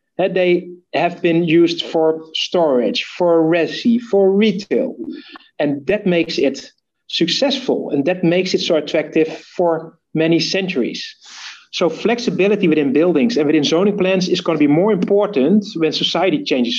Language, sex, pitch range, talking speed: English, male, 140-205 Hz, 150 wpm